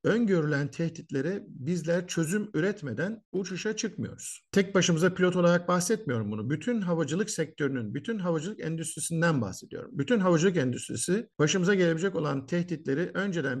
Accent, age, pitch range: native, 50-69, 150-195 Hz